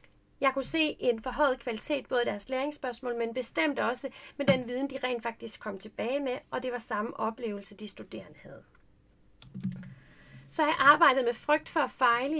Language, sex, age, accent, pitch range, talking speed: Danish, female, 30-49, native, 225-290 Hz, 185 wpm